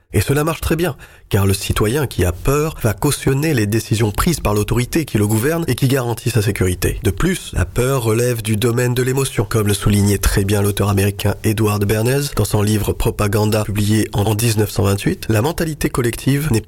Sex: male